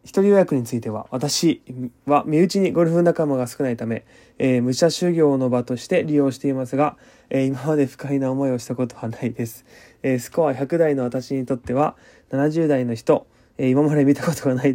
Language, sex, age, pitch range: Japanese, male, 20-39, 125-145 Hz